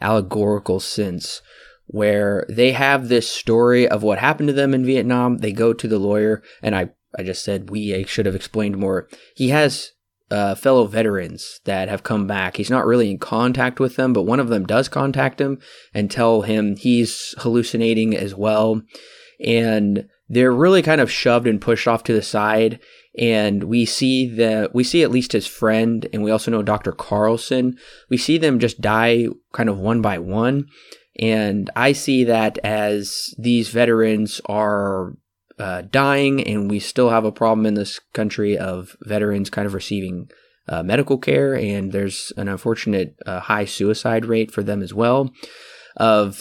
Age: 20-39